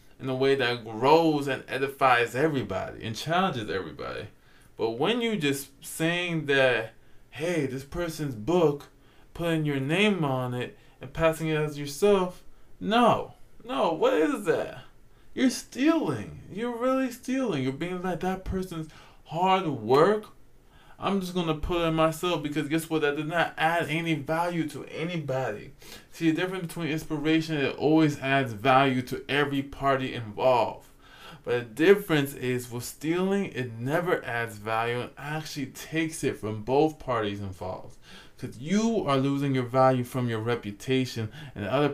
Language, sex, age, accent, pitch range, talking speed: English, male, 20-39, American, 120-160 Hz, 155 wpm